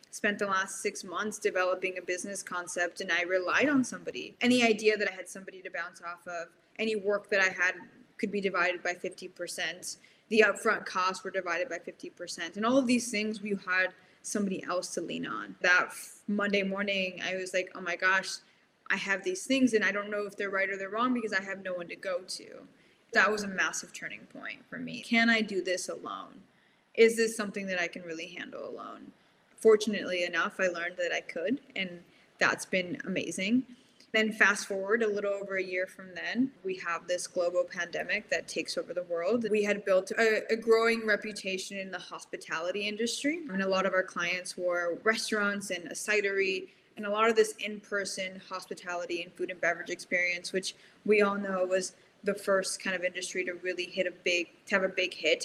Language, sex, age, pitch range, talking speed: English, female, 10-29, 180-210 Hz, 205 wpm